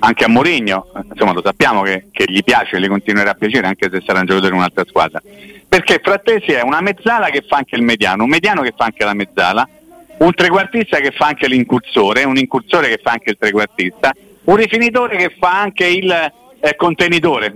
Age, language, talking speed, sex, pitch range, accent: 50-69, Italian, 210 wpm, male, 120-195 Hz, native